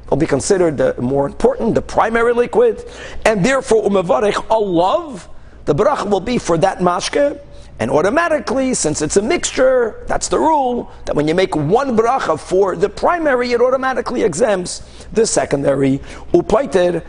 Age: 50-69